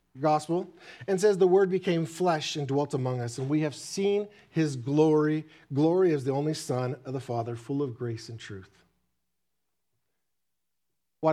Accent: American